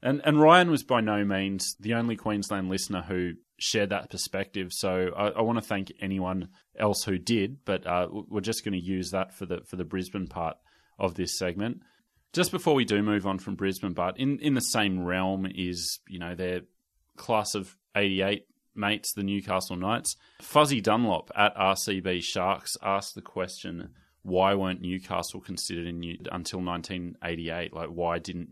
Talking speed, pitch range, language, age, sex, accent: 180 wpm, 90-105 Hz, English, 30-49, male, Australian